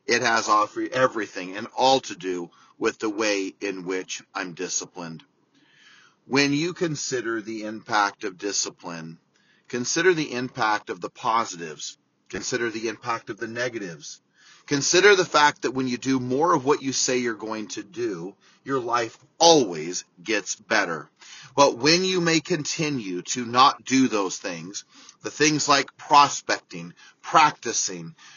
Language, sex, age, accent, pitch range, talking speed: English, male, 40-59, American, 115-155 Hz, 145 wpm